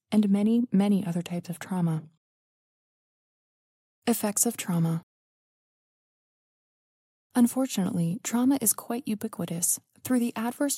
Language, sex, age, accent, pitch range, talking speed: English, female, 20-39, American, 170-230 Hz, 100 wpm